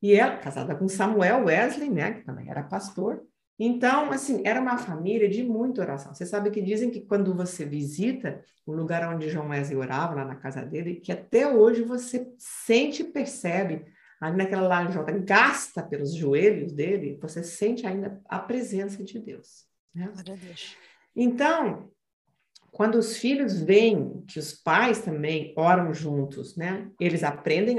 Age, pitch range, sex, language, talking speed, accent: 50-69, 170-230 Hz, female, Portuguese, 160 wpm, Brazilian